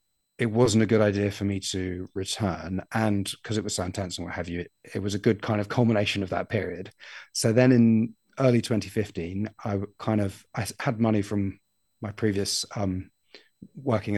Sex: male